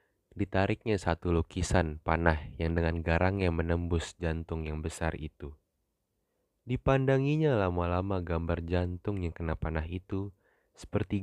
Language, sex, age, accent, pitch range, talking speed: Indonesian, male, 20-39, native, 85-100 Hz, 120 wpm